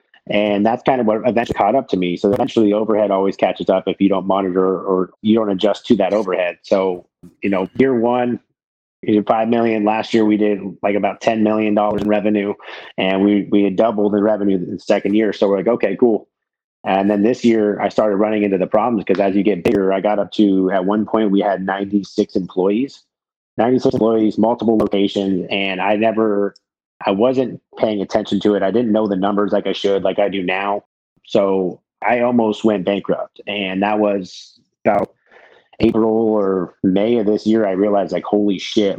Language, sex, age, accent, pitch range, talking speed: English, male, 30-49, American, 95-105 Hz, 205 wpm